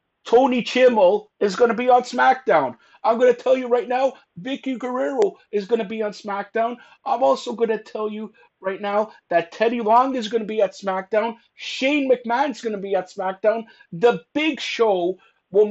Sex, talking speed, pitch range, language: male, 195 wpm, 155-220 Hz, English